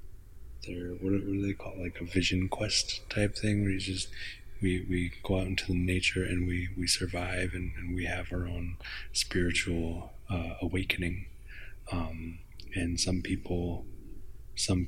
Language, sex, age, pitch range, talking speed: English, male, 20-39, 90-95 Hz, 160 wpm